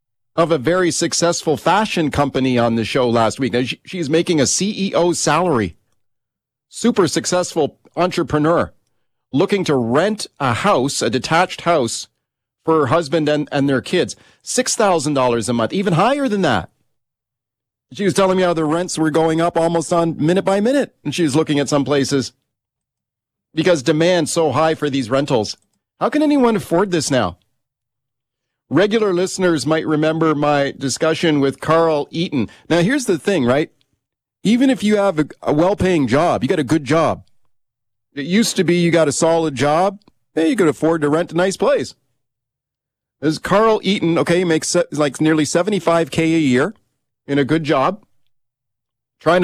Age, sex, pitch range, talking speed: 40-59, male, 130-175 Hz, 165 wpm